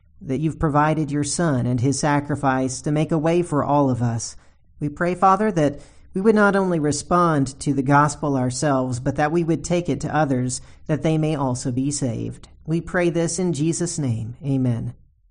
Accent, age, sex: American, 40-59, male